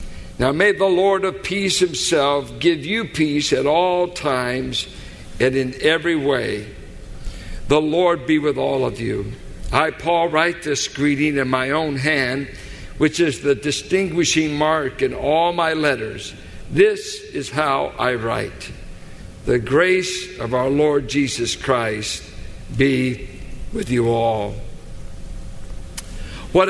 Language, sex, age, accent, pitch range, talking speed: English, male, 60-79, American, 125-160 Hz, 135 wpm